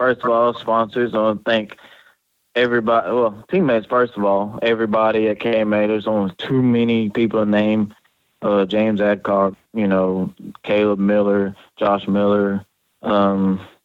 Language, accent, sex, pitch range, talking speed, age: English, American, male, 100-110 Hz, 145 wpm, 20-39